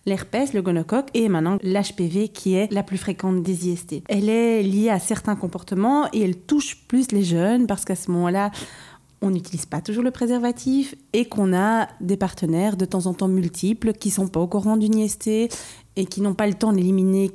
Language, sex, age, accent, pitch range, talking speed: French, female, 30-49, French, 185-220 Hz, 210 wpm